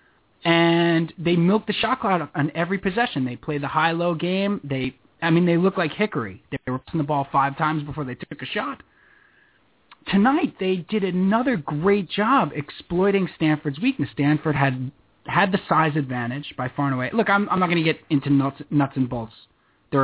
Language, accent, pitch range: English, American, 130-175 Hz